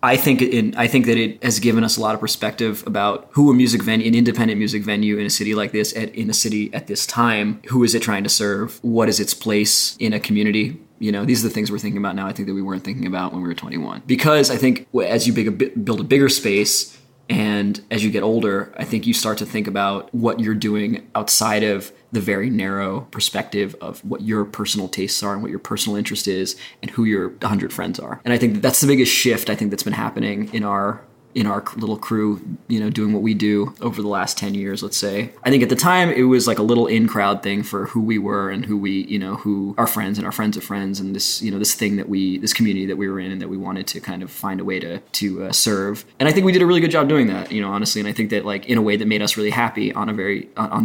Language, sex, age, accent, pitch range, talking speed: English, male, 20-39, American, 100-115 Hz, 280 wpm